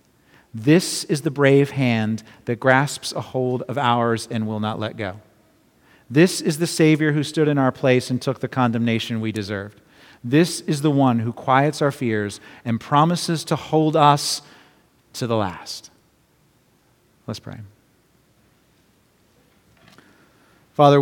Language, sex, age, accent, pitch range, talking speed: English, male, 40-59, American, 115-145 Hz, 145 wpm